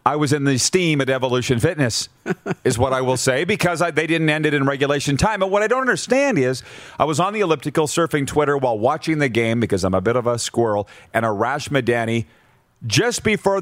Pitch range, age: 125-170 Hz, 40-59